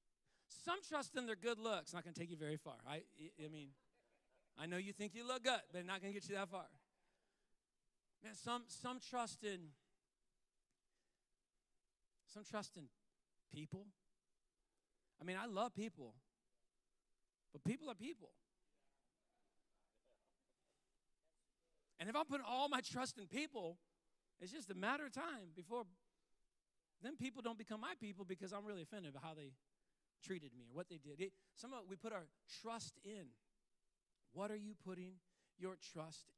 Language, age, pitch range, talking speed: English, 40-59, 175-255 Hz, 160 wpm